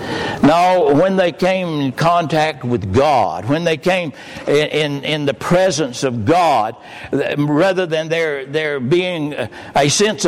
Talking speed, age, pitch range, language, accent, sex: 140 wpm, 60-79, 135-175 Hz, English, American, male